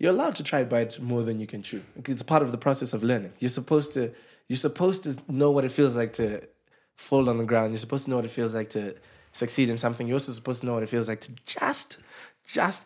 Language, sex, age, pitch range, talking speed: English, male, 20-39, 110-135 Hz, 265 wpm